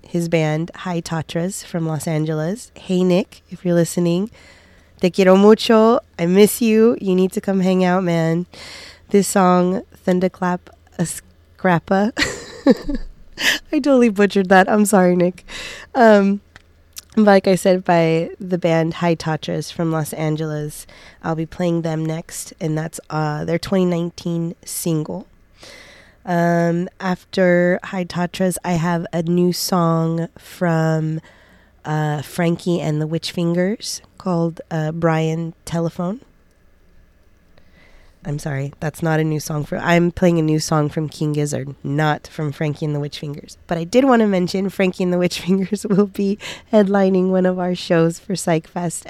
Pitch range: 155-185 Hz